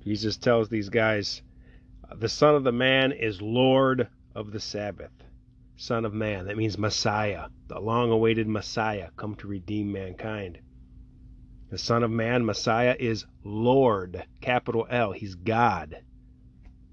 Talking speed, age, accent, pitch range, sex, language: 135 wpm, 30-49, American, 90-125 Hz, male, English